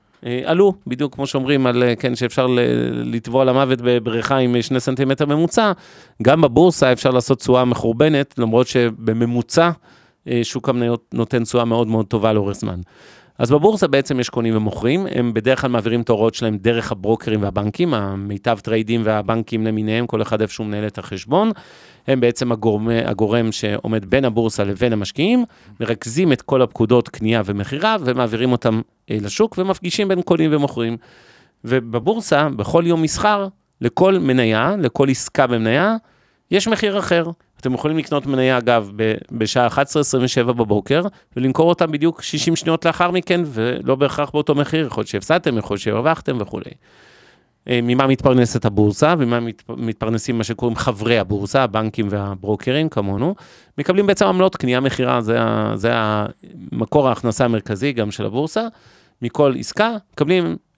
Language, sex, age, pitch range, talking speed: Hebrew, male, 30-49, 115-150 Hz, 145 wpm